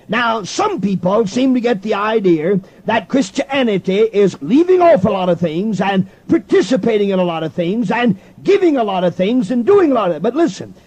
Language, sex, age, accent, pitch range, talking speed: English, male, 50-69, American, 195-255 Hz, 210 wpm